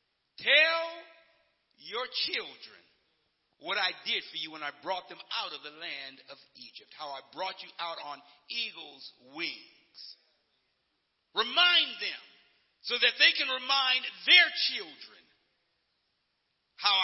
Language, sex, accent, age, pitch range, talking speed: English, male, American, 50-69, 180-290 Hz, 125 wpm